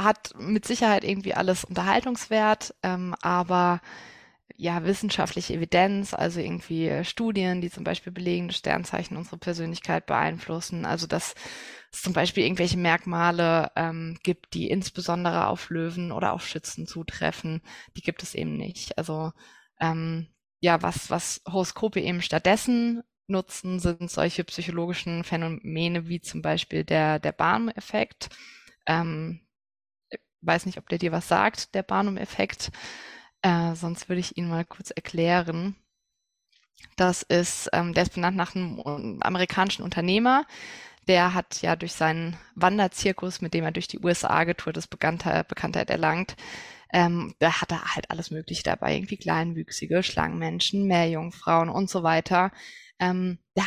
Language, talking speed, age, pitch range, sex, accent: German, 140 wpm, 20-39, 165-190 Hz, female, German